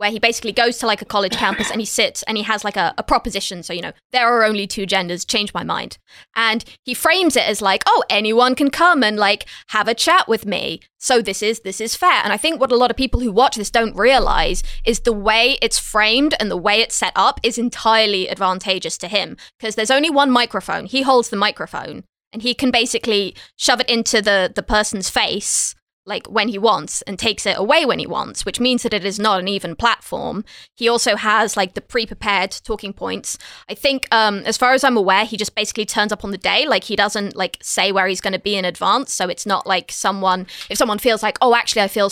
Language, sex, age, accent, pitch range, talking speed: English, female, 20-39, British, 200-240 Hz, 245 wpm